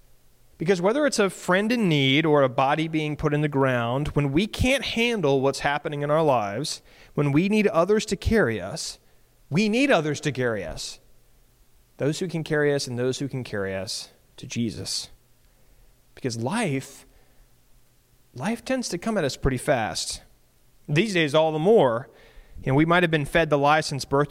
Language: English